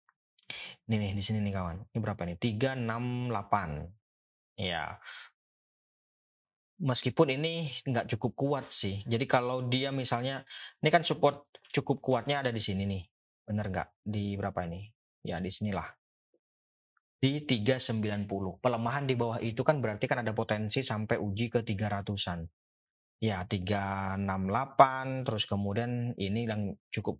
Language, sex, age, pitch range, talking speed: Indonesian, male, 20-39, 100-125 Hz, 130 wpm